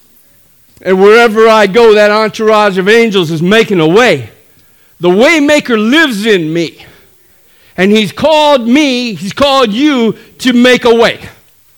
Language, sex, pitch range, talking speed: English, male, 165-245 Hz, 150 wpm